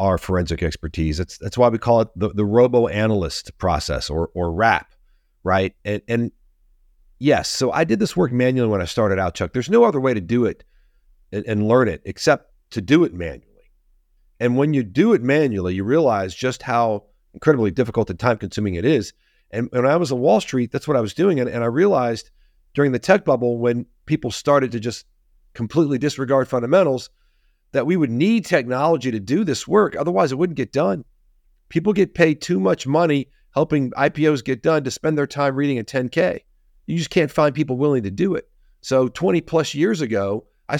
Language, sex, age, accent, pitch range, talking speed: English, male, 40-59, American, 110-145 Hz, 200 wpm